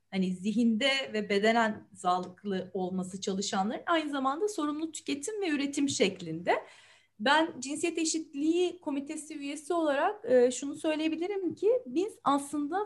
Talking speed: 115 wpm